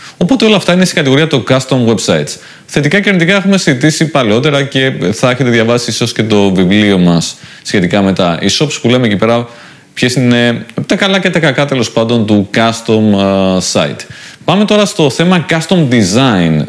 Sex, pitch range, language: male, 105-150 Hz, Greek